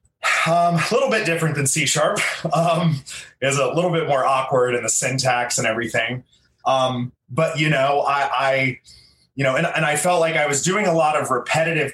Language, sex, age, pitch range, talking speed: English, male, 20-39, 130-165 Hz, 195 wpm